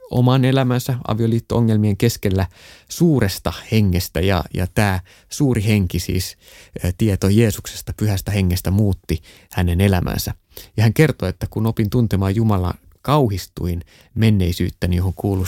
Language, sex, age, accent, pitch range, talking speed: Finnish, male, 20-39, native, 90-115 Hz, 125 wpm